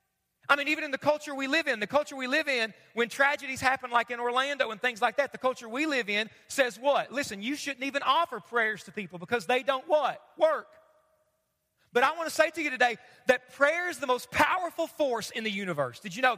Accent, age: American, 30-49